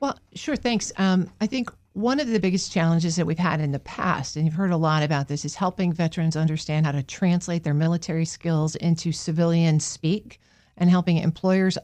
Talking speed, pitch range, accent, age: 205 wpm, 155-185 Hz, American, 50-69